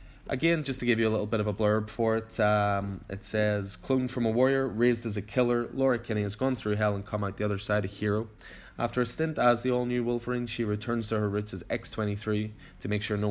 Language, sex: English, male